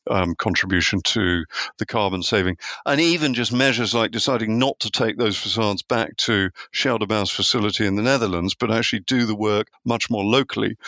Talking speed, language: 175 wpm, English